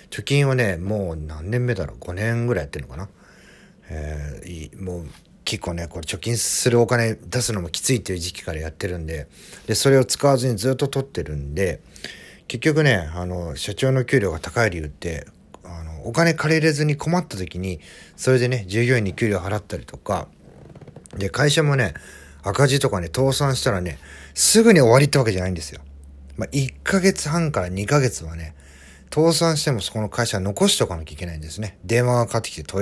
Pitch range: 90-130 Hz